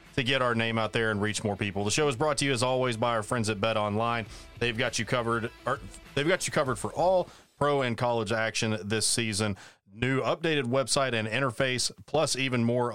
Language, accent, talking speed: English, American, 220 wpm